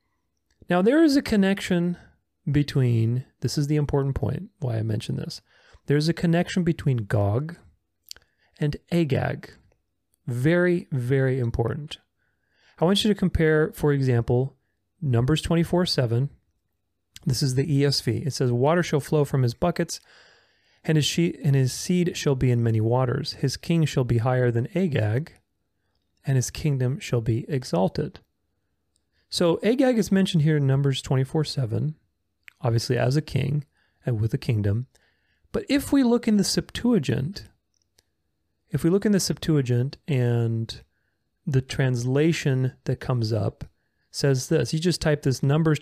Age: 30-49